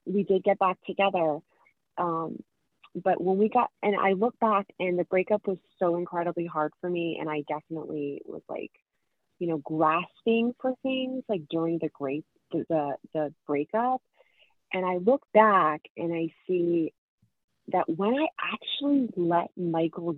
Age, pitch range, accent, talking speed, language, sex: 30-49, 155-200 Hz, American, 160 wpm, English, female